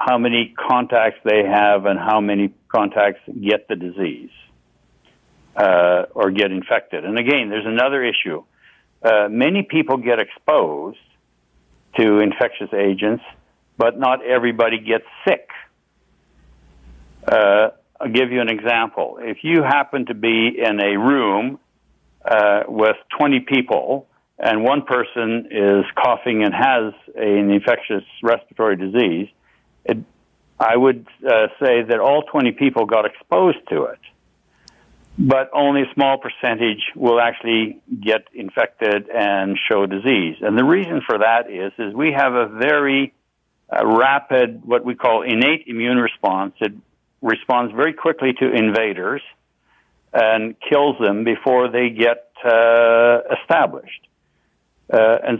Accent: American